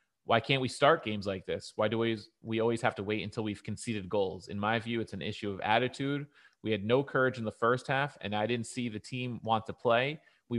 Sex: male